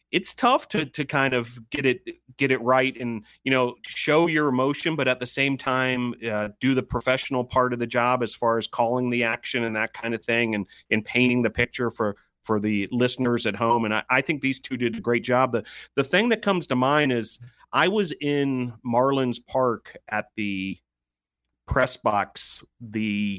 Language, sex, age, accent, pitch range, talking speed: English, male, 40-59, American, 110-130 Hz, 205 wpm